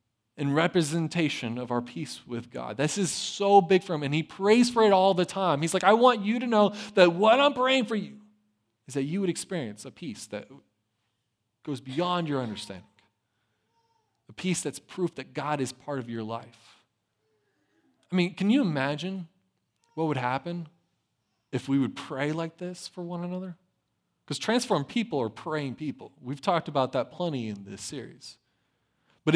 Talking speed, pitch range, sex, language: 180 wpm, 125-205 Hz, male, English